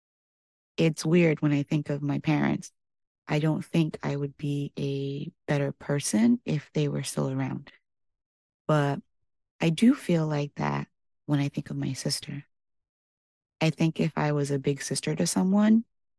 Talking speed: 165 wpm